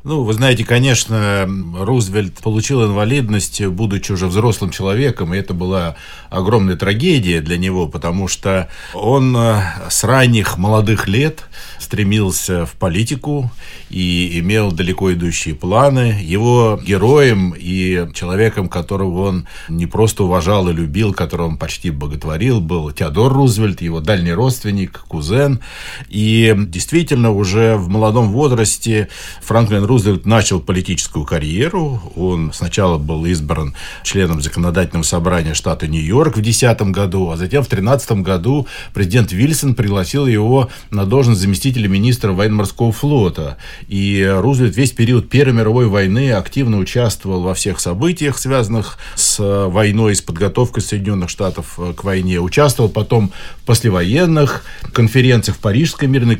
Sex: male